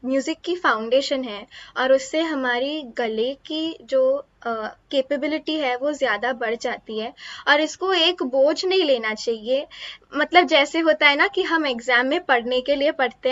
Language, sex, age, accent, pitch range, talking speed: Hindi, female, 10-29, native, 235-295 Hz, 170 wpm